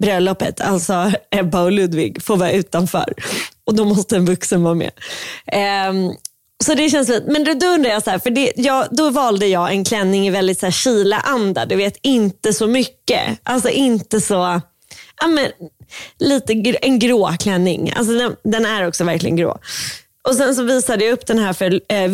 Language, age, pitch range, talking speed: Swedish, 20-39, 190-250 Hz, 195 wpm